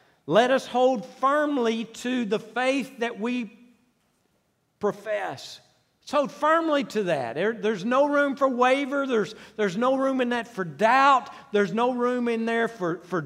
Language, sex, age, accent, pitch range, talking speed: English, male, 50-69, American, 205-250 Hz, 160 wpm